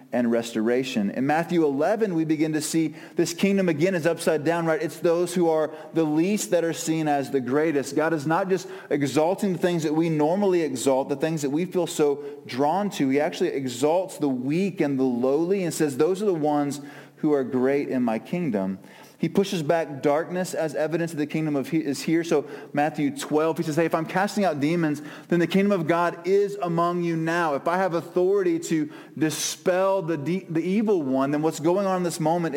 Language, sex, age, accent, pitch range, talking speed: English, male, 30-49, American, 140-170 Hz, 215 wpm